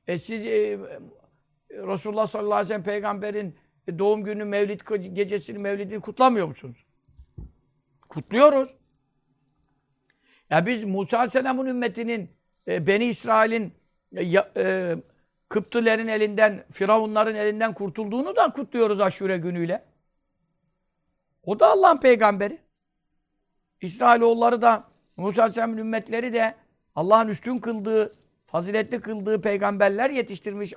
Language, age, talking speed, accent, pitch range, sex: Turkish, 60-79, 105 wpm, native, 190-230 Hz, male